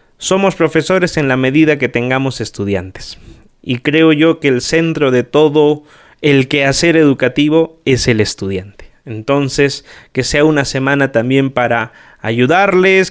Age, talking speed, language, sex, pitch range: 30-49, 135 wpm, Spanish, male, 125-155 Hz